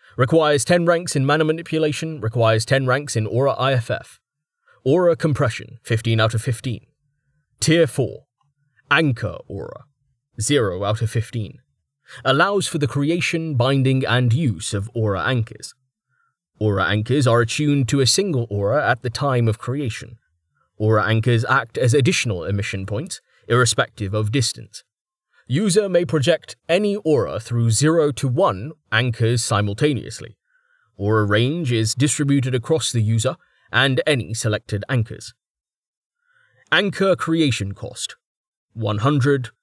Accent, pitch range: British, 115-150 Hz